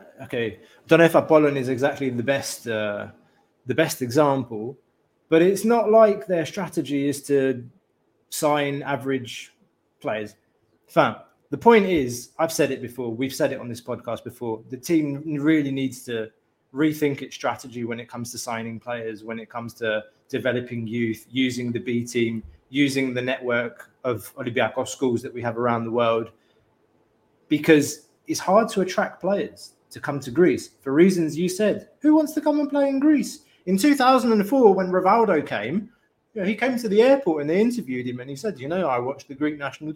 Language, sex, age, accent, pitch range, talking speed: English, male, 20-39, British, 120-170 Hz, 180 wpm